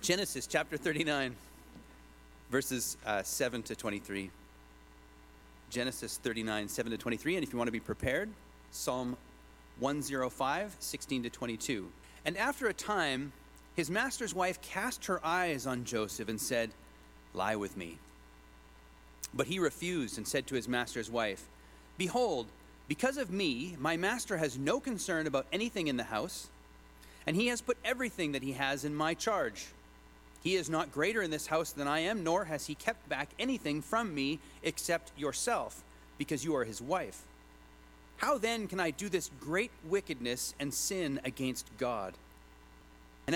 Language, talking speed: English, 160 wpm